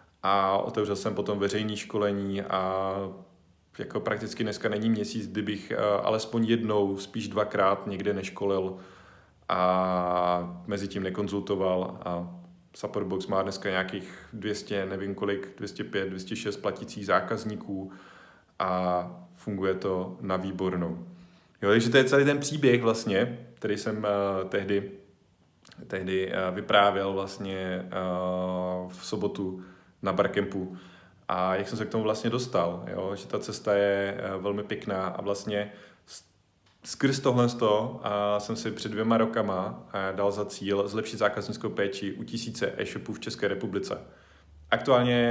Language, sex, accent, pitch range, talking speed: Czech, male, native, 95-115 Hz, 120 wpm